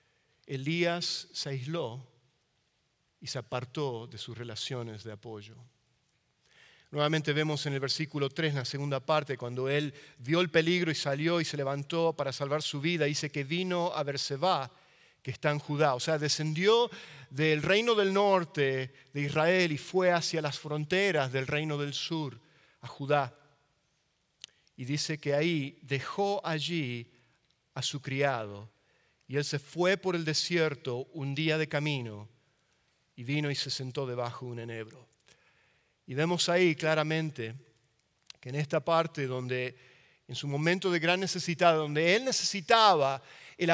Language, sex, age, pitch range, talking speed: English, male, 40-59, 135-170 Hz, 150 wpm